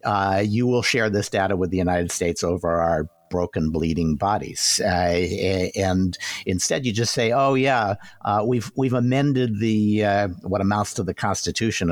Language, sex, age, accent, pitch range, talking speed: English, male, 50-69, American, 85-110 Hz, 170 wpm